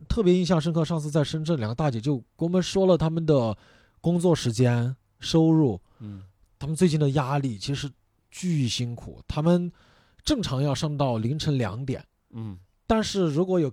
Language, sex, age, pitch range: Chinese, male, 20-39, 120-180 Hz